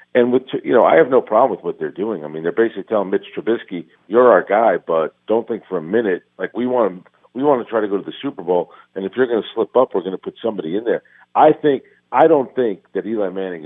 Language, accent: English, American